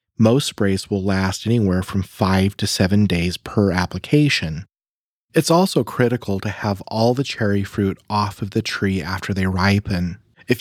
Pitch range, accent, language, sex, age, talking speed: 95-125 Hz, American, English, male, 30-49, 165 wpm